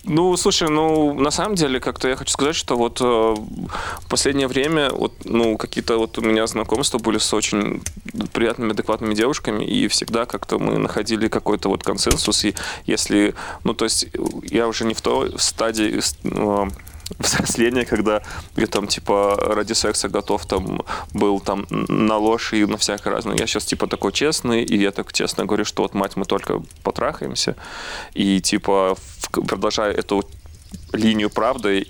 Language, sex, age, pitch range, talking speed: Russian, male, 20-39, 95-110 Hz, 165 wpm